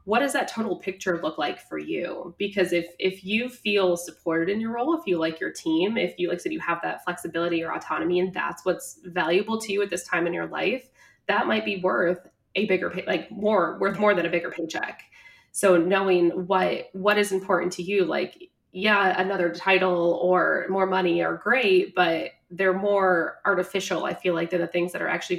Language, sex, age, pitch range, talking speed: English, female, 20-39, 175-200 Hz, 215 wpm